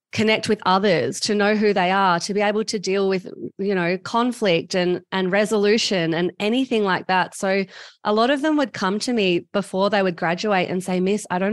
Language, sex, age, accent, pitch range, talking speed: English, female, 20-39, Australian, 170-210 Hz, 220 wpm